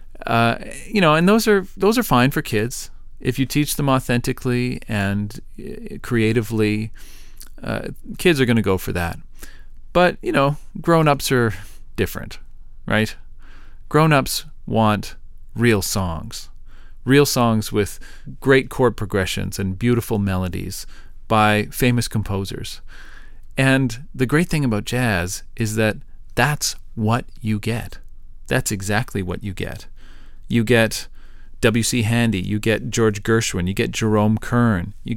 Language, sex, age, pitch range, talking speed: English, male, 40-59, 100-125 Hz, 135 wpm